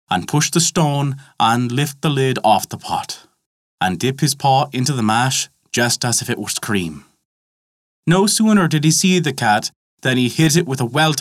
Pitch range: 120-160 Hz